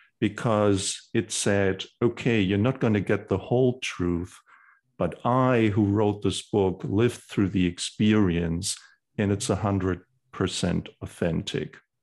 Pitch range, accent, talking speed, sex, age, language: 95-125 Hz, German, 130 wpm, male, 50-69, English